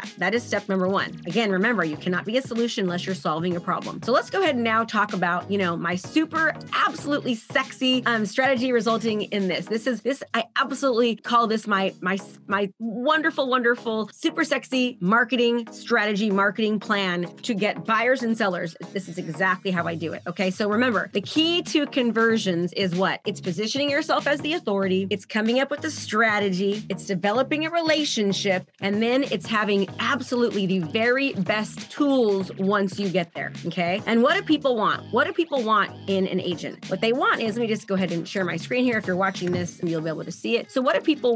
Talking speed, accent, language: 215 wpm, American, English